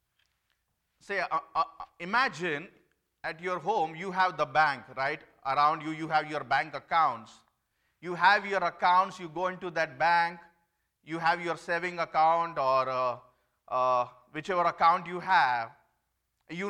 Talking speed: 145 wpm